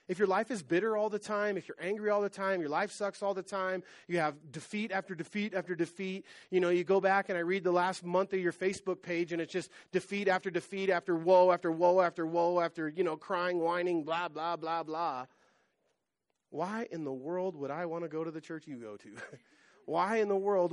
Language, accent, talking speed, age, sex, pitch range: English, American, 235 wpm, 30-49, male, 175-225 Hz